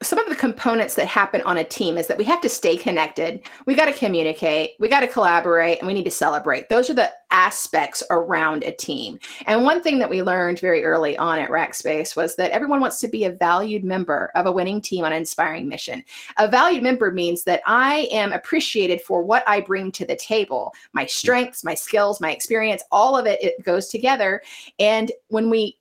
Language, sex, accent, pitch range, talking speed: English, female, American, 180-255 Hz, 220 wpm